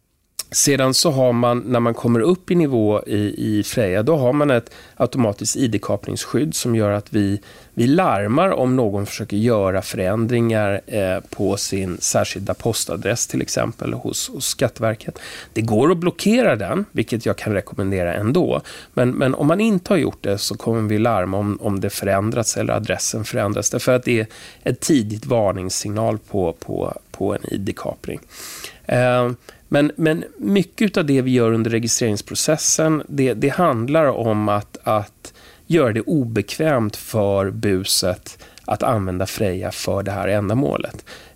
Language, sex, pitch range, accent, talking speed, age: Swedish, male, 105-130 Hz, native, 160 wpm, 30-49